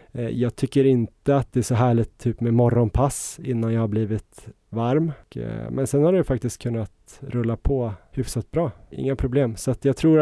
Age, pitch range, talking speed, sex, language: 20-39, 115-135 Hz, 190 wpm, male, Swedish